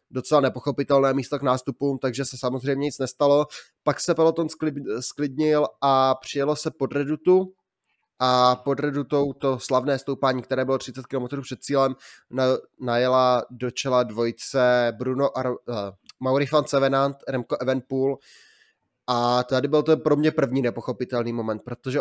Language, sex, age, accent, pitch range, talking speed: Czech, male, 20-39, native, 130-140 Hz, 140 wpm